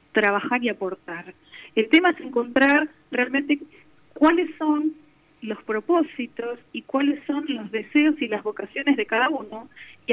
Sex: female